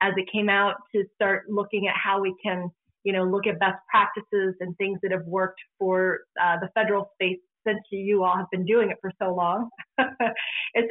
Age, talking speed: 30-49, 210 wpm